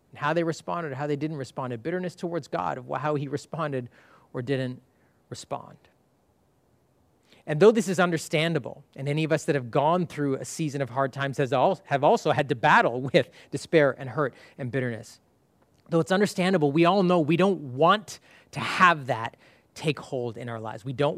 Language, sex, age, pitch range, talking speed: English, male, 30-49, 130-165 Hz, 195 wpm